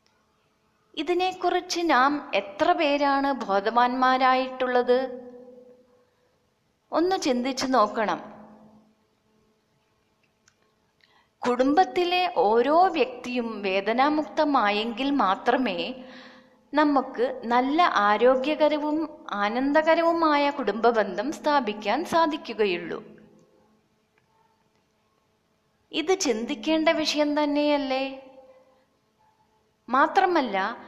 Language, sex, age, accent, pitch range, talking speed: Malayalam, female, 20-39, native, 225-295 Hz, 50 wpm